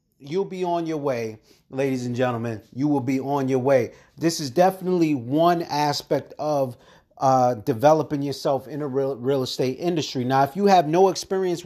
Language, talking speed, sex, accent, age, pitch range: English, 180 wpm, male, American, 30-49, 130-170 Hz